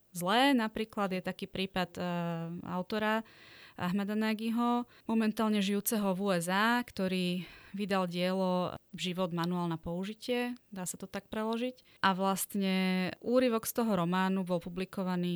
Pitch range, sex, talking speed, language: 170-205 Hz, female, 130 wpm, Slovak